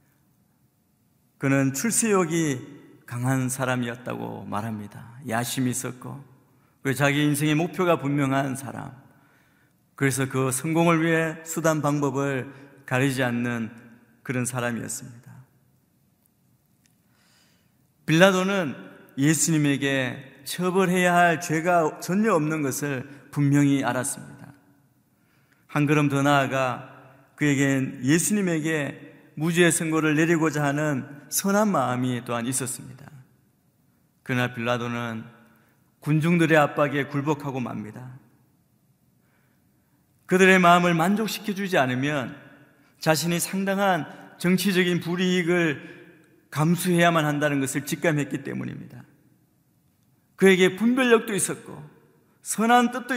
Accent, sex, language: native, male, Korean